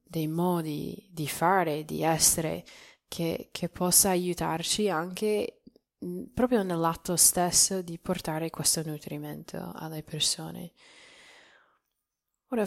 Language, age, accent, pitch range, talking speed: Italian, 20-39, native, 155-200 Hz, 100 wpm